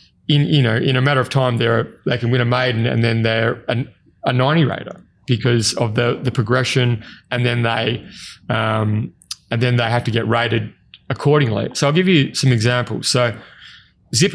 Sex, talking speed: male, 190 wpm